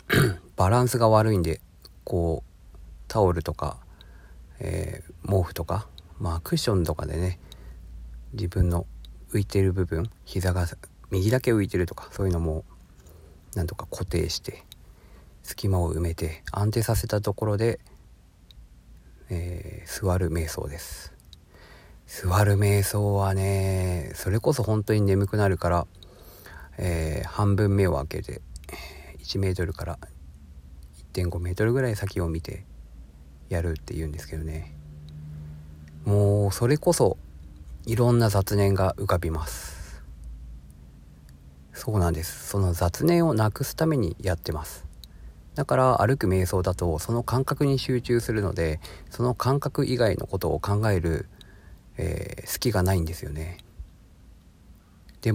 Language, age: Japanese, 40-59